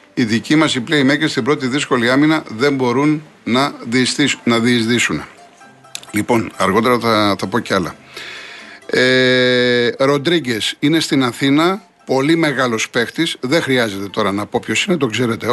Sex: male